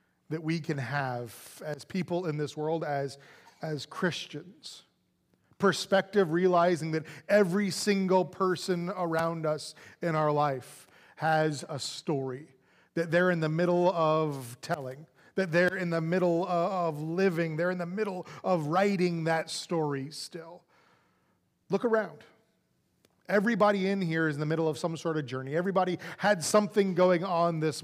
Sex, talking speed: male, 150 wpm